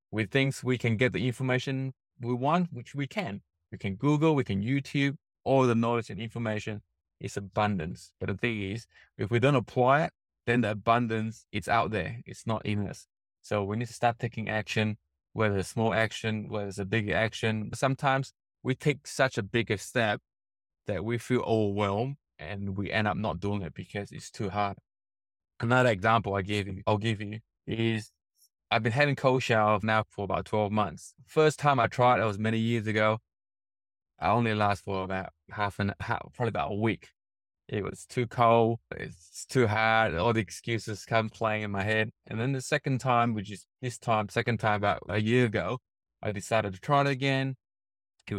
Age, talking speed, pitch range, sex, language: 20-39, 200 wpm, 100-120 Hz, male, English